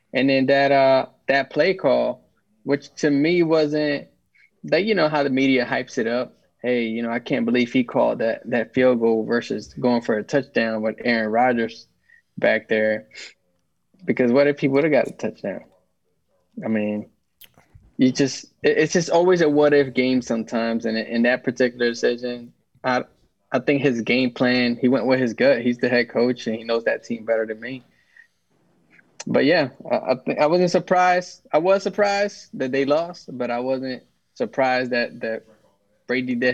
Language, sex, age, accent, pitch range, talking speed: English, male, 20-39, American, 115-140 Hz, 185 wpm